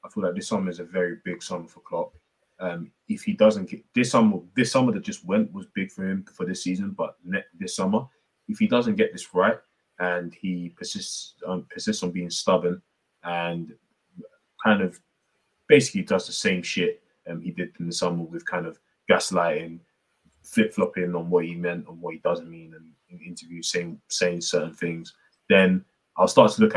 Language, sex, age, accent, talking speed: English, male, 20-39, British, 195 wpm